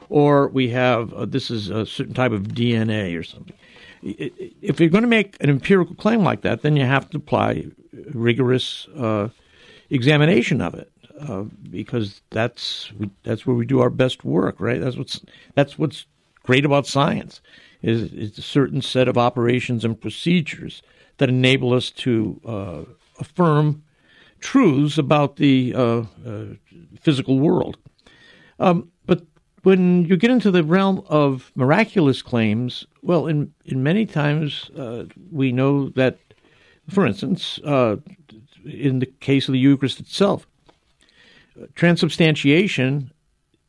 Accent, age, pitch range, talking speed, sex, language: American, 60-79, 120-155 Hz, 145 wpm, male, English